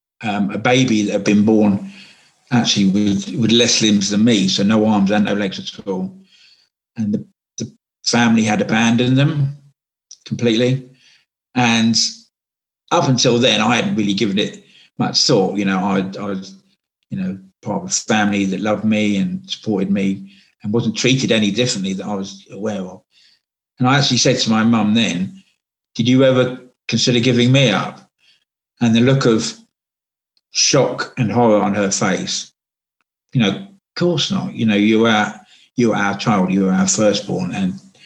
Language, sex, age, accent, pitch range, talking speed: English, male, 50-69, British, 105-135 Hz, 175 wpm